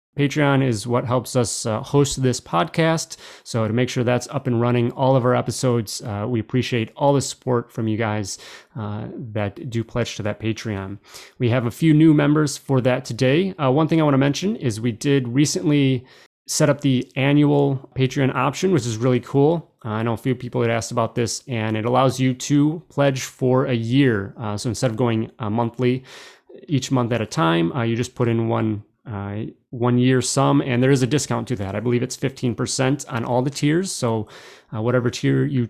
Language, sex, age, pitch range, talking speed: English, male, 30-49, 115-140 Hz, 215 wpm